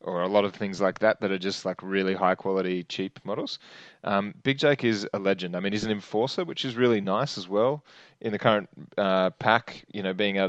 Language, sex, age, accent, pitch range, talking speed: English, male, 20-39, Australian, 95-115 Hz, 235 wpm